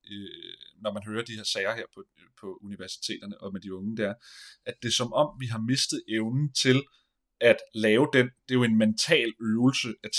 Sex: male